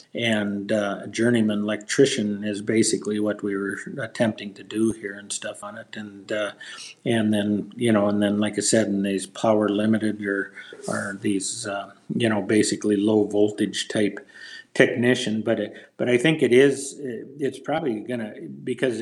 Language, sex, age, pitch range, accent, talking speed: English, male, 50-69, 105-120 Hz, American, 175 wpm